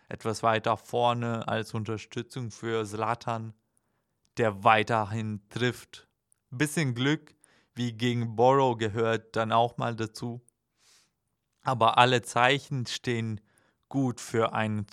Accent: German